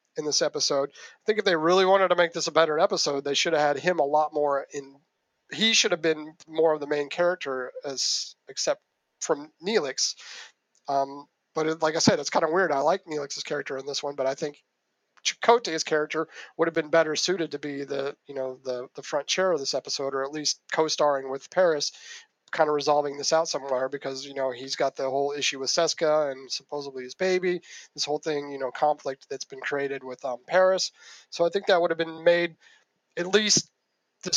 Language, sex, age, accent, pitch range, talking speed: English, male, 30-49, American, 140-170 Hz, 215 wpm